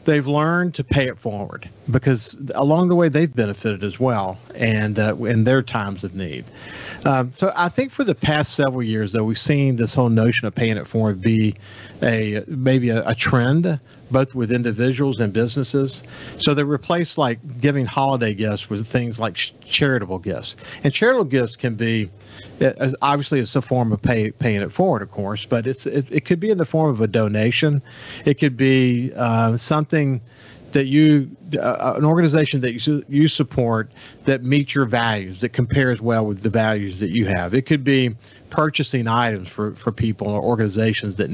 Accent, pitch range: American, 110-135 Hz